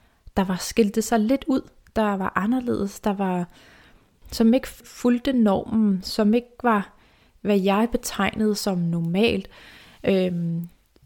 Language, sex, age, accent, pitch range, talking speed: Danish, female, 30-49, native, 180-230 Hz, 130 wpm